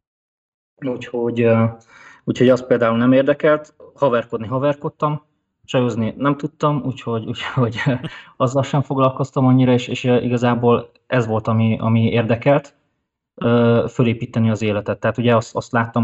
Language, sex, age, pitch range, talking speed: Hungarian, male, 20-39, 110-130 Hz, 125 wpm